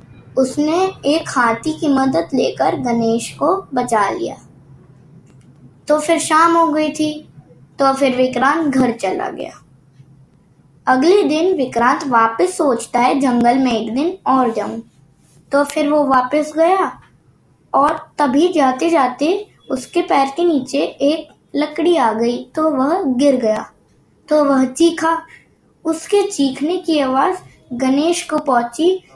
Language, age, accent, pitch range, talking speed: Hindi, 20-39, native, 250-315 Hz, 135 wpm